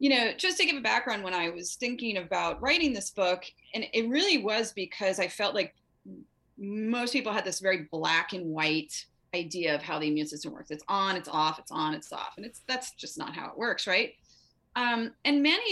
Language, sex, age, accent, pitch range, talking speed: English, female, 30-49, American, 165-220 Hz, 220 wpm